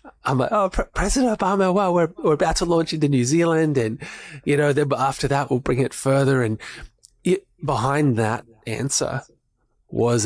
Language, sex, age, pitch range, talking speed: English, male, 20-39, 110-125 Hz, 180 wpm